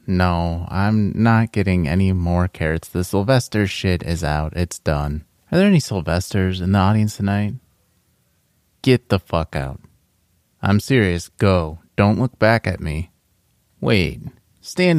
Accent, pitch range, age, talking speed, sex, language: American, 85-110 Hz, 30-49, 145 wpm, male, English